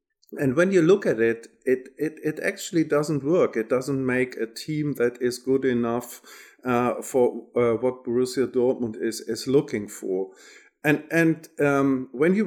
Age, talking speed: 50-69, 175 wpm